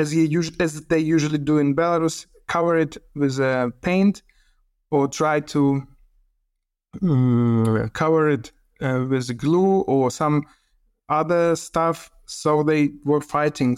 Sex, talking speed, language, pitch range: male, 135 wpm, Swedish, 130-155 Hz